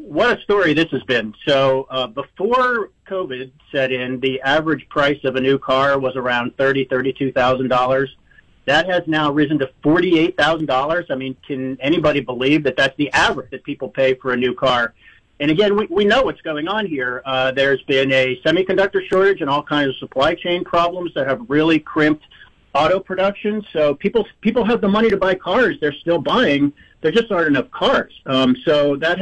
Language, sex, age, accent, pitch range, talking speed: English, male, 50-69, American, 130-175 Hz, 195 wpm